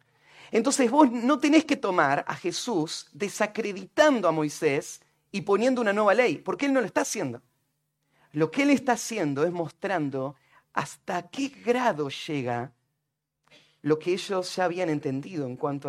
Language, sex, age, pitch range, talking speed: Spanish, male, 30-49, 145-190 Hz, 155 wpm